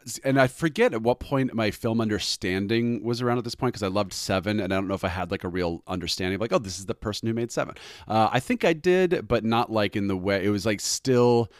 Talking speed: 280 wpm